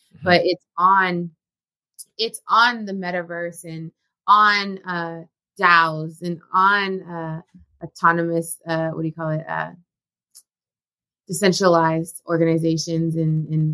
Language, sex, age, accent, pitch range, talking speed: English, female, 20-39, American, 165-195 Hz, 110 wpm